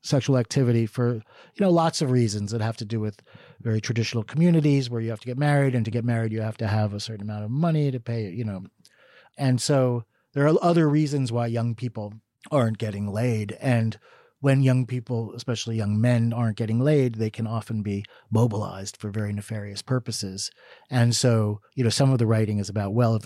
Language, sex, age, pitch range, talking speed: English, male, 40-59, 105-130 Hz, 210 wpm